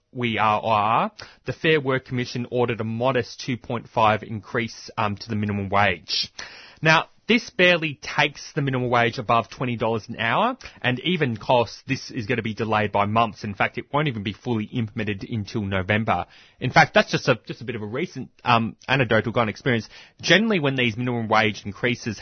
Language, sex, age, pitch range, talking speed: English, male, 20-39, 100-125 Hz, 195 wpm